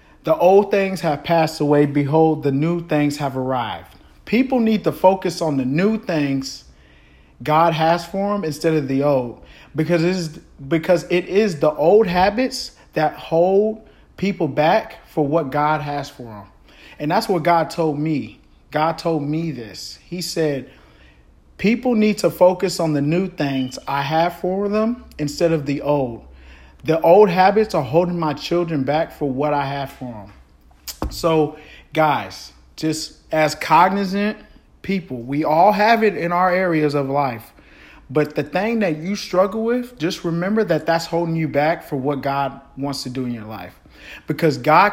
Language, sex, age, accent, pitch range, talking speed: English, male, 40-59, American, 140-180 Hz, 170 wpm